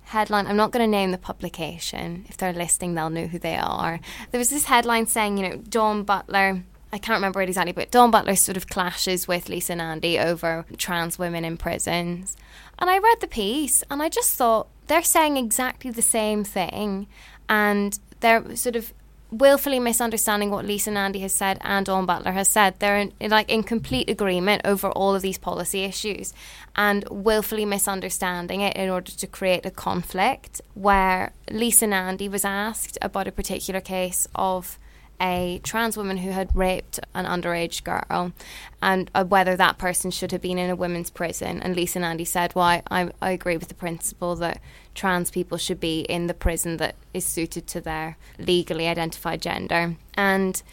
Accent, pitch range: British, 180-210 Hz